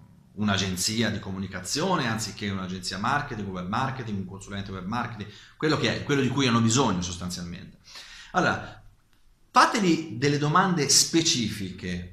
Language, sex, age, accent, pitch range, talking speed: Italian, male, 30-49, native, 100-145 Hz, 130 wpm